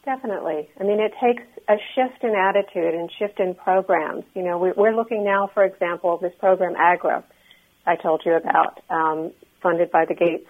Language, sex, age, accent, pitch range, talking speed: English, female, 50-69, American, 175-220 Hz, 185 wpm